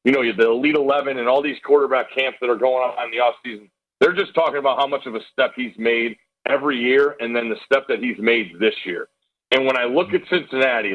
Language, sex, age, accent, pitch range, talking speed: English, male, 40-59, American, 125-185 Hz, 245 wpm